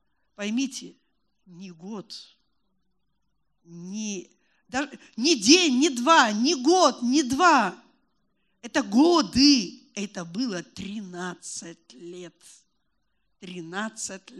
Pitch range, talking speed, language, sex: 205-320 Hz, 80 wpm, Russian, female